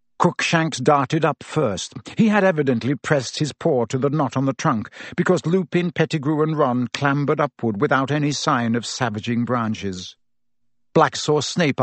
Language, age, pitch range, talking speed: English, 60-79, 120-165 Hz, 160 wpm